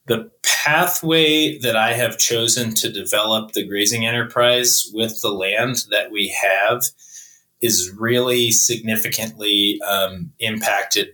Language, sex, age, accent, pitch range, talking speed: English, male, 20-39, American, 100-125 Hz, 120 wpm